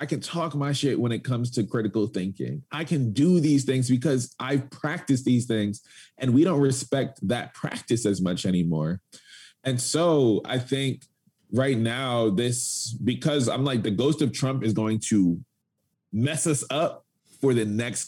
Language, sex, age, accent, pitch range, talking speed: English, male, 20-39, American, 110-140 Hz, 180 wpm